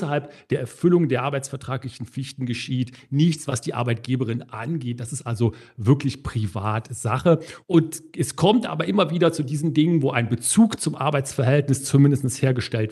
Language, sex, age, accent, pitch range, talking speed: German, male, 40-59, German, 130-155 Hz, 150 wpm